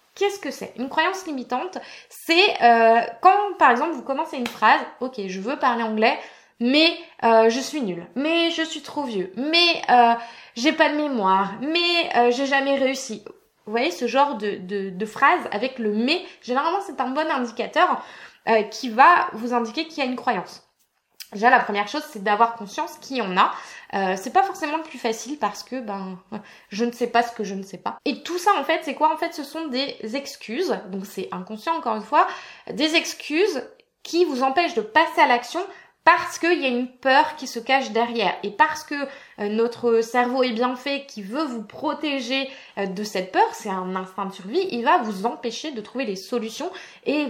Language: French